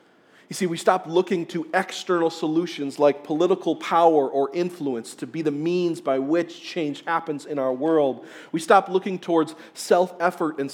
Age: 40-59